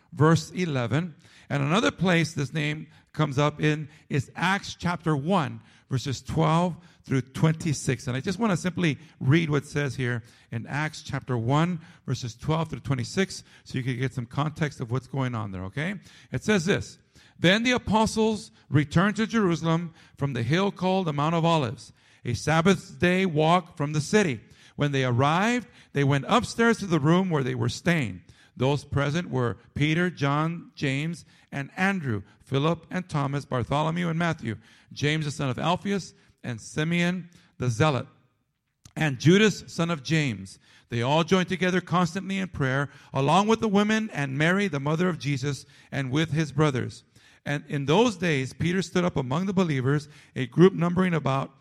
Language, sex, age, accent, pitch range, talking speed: English, male, 50-69, American, 135-175 Hz, 175 wpm